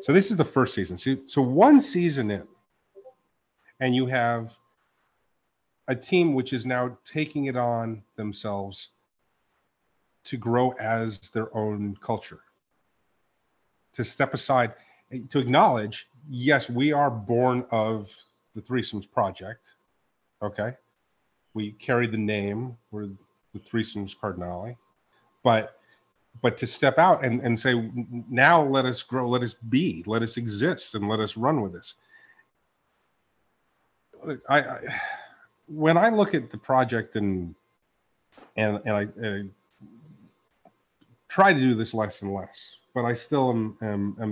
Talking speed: 140 wpm